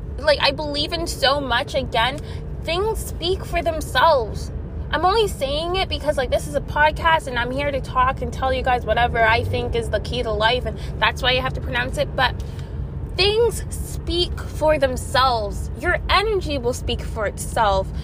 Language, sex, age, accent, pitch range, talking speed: English, female, 20-39, American, 245-365 Hz, 190 wpm